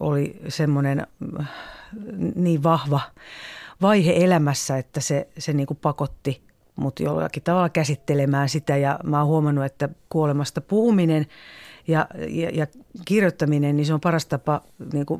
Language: Finnish